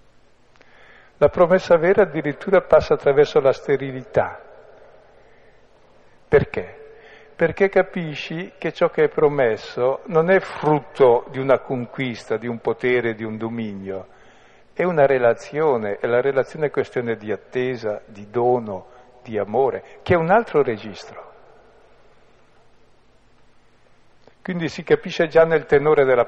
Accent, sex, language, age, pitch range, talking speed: native, male, Italian, 50-69, 120-180 Hz, 125 wpm